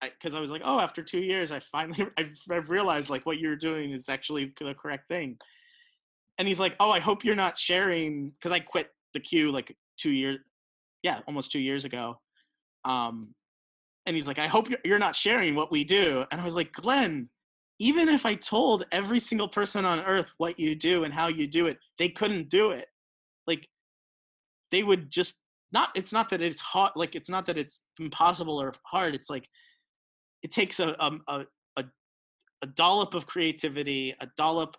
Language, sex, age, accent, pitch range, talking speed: English, male, 30-49, American, 140-190 Hz, 195 wpm